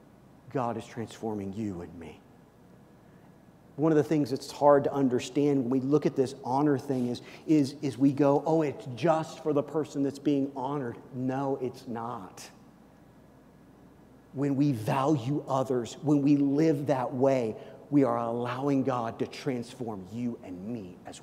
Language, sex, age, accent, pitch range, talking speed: English, male, 40-59, American, 125-150 Hz, 160 wpm